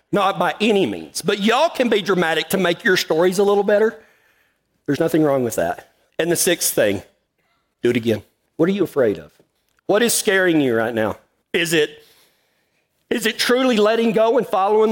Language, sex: English, male